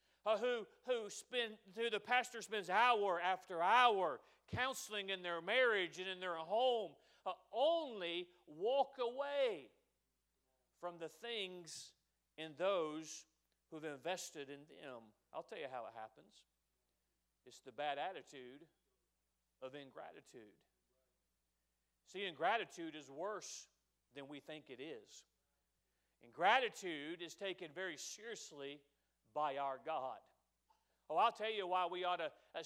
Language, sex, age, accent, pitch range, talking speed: English, male, 40-59, American, 140-200 Hz, 125 wpm